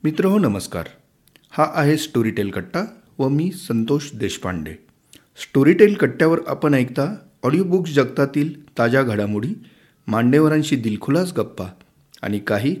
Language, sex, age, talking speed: Marathi, male, 40-59, 115 wpm